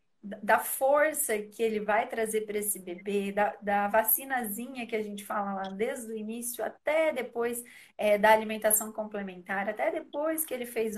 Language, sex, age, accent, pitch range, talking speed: Portuguese, female, 30-49, Brazilian, 205-240 Hz, 170 wpm